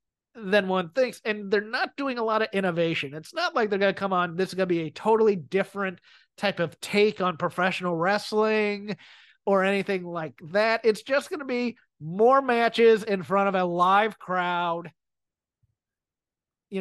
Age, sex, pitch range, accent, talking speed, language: 30-49, male, 180-215 Hz, American, 180 wpm, English